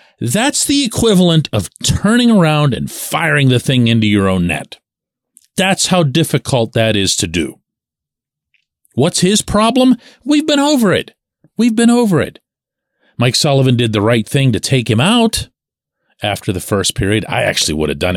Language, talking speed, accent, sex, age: English, 170 wpm, American, male, 40-59